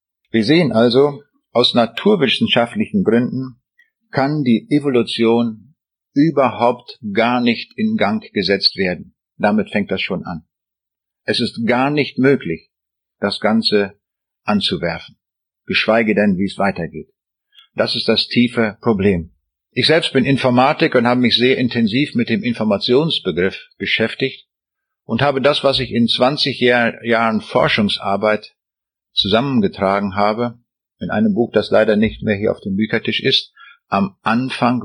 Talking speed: 135 wpm